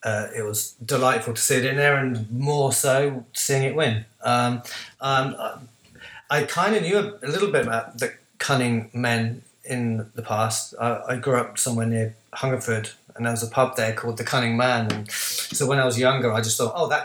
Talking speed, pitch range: 210 wpm, 115-135 Hz